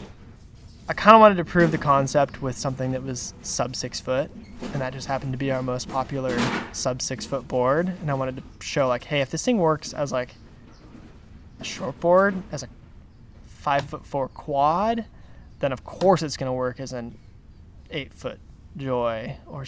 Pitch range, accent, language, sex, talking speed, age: 130-150 Hz, American, English, male, 190 wpm, 20-39